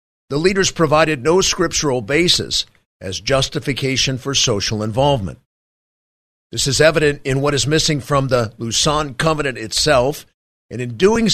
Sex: male